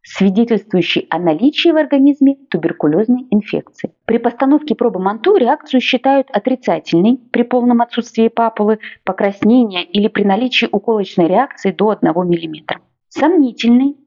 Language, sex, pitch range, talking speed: Russian, female, 175-255 Hz, 115 wpm